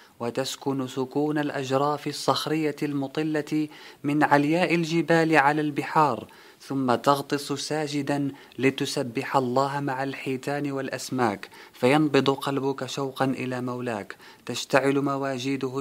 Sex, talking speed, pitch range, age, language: male, 95 wpm, 130-145 Hz, 20-39, Arabic